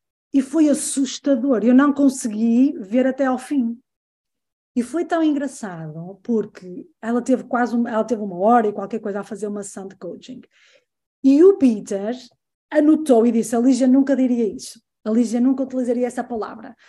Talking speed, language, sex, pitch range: 175 wpm, Portuguese, female, 220-275 Hz